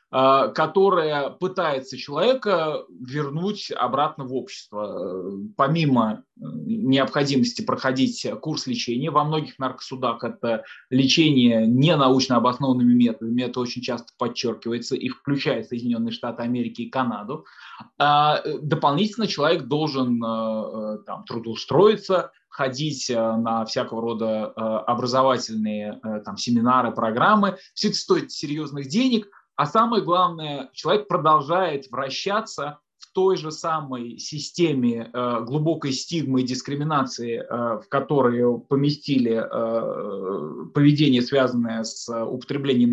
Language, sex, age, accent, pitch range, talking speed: Russian, male, 20-39, native, 120-160 Hz, 100 wpm